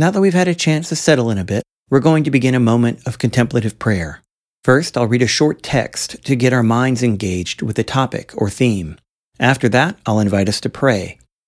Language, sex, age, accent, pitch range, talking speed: English, male, 40-59, American, 110-135 Hz, 225 wpm